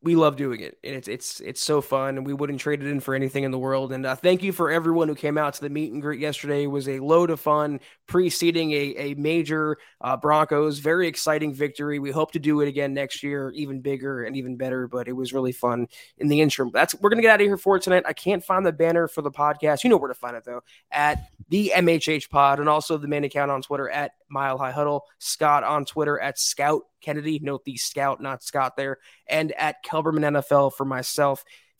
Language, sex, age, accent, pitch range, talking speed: English, male, 20-39, American, 145-165 Hz, 245 wpm